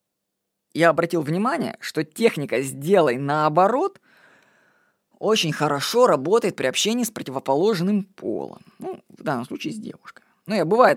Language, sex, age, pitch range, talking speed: Russian, female, 20-39, 145-225 Hz, 135 wpm